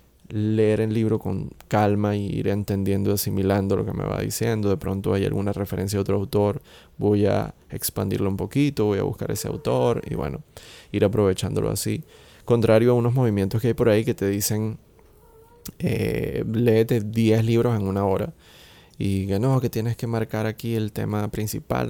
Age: 20-39